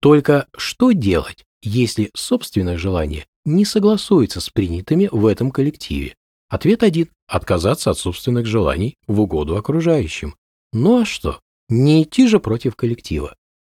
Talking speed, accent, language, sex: 130 wpm, native, Russian, male